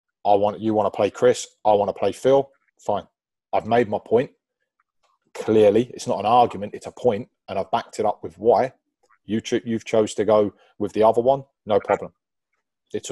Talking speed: 205 wpm